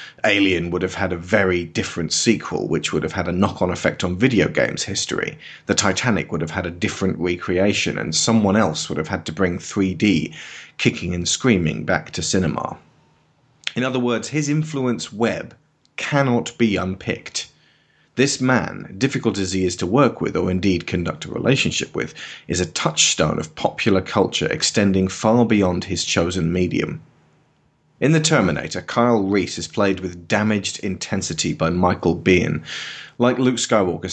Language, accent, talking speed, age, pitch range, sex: English, British, 165 wpm, 30-49, 90-115 Hz, male